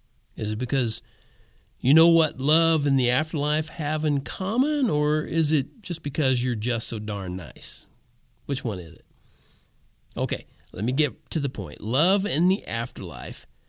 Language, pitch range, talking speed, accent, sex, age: English, 130-180 Hz, 165 wpm, American, male, 50-69